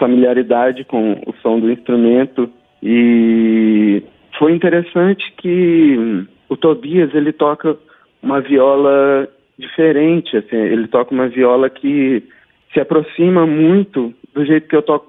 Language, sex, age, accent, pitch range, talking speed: Portuguese, male, 40-59, Brazilian, 125-155 Hz, 125 wpm